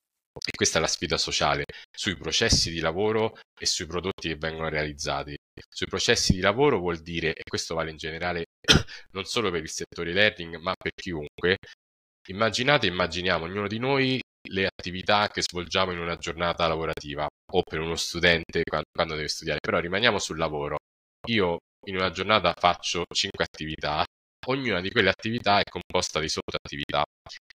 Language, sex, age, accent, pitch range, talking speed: Italian, male, 20-39, native, 80-95 Hz, 165 wpm